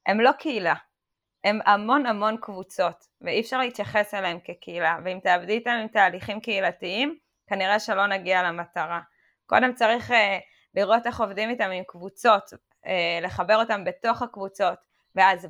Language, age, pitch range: Hebrew, 20-39, 185-230 Hz